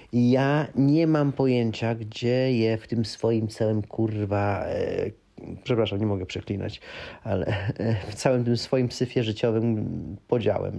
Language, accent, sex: Polish, native, male